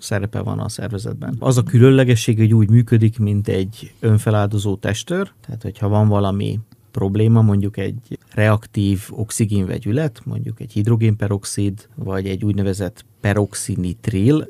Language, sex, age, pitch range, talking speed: Hungarian, male, 30-49, 105-120 Hz, 125 wpm